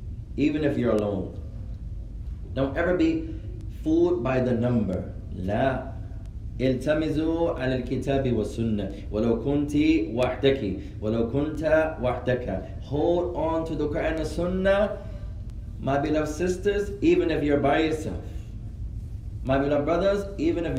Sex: male